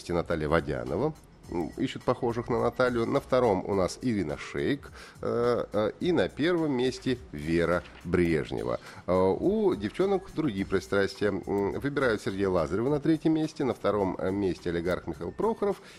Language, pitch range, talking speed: Russian, 85-125 Hz, 130 wpm